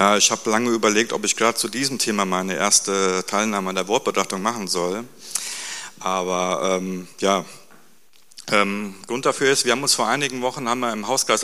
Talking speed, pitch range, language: 190 wpm, 95-115 Hz, German